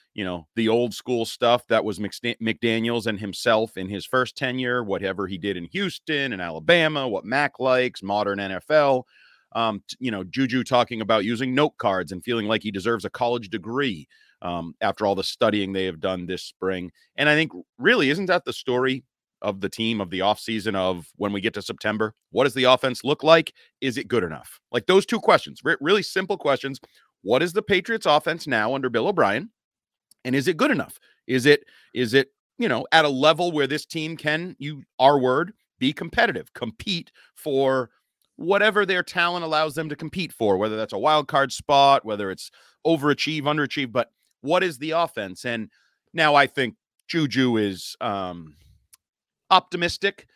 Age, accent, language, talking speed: 30-49, American, English, 185 wpm